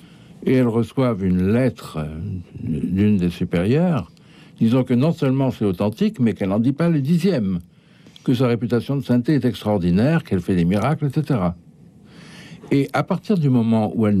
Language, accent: French, French